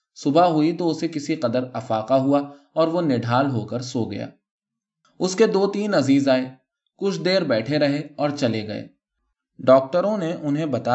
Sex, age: male, 20-39